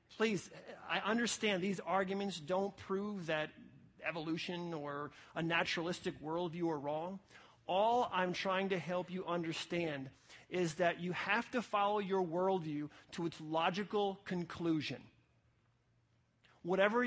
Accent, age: American, 40-59